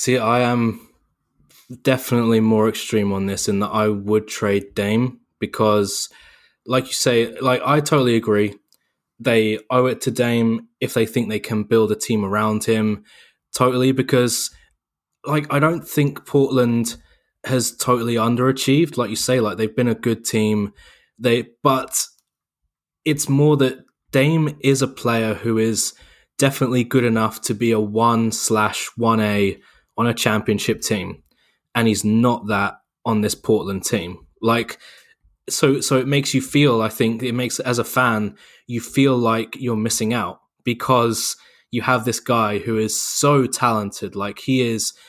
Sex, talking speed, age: male, 160 wpm, 20-39